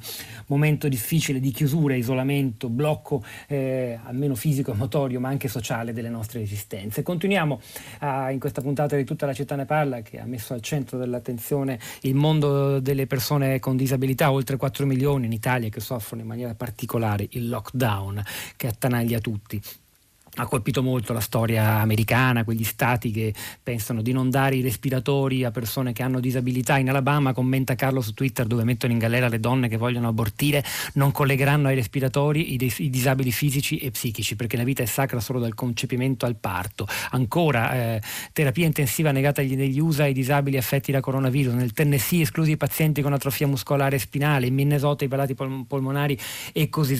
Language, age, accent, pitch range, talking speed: Italian, 30-49, native, 120-140 Hz, 175 wpm